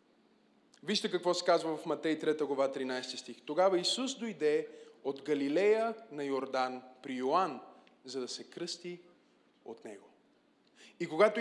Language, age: Bulgarian, 20-39